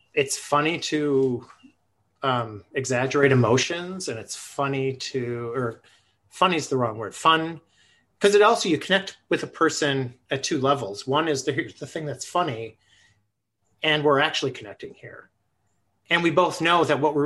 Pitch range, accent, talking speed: 110-150 Hz, American, 165 wpm